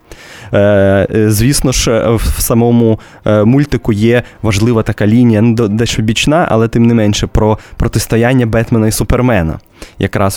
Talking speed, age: 120 wpm, 20-39